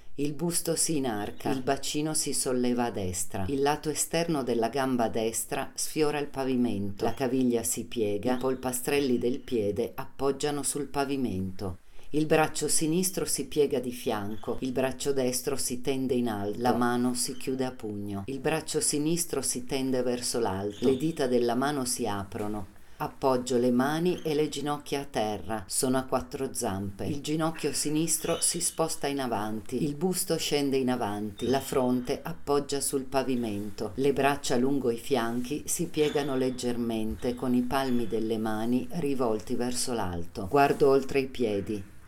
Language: Italian